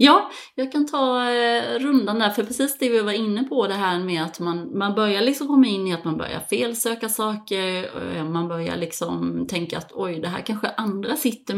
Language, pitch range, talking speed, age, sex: Swedish, 170-225 Hz, 205 wpm, 30-49, female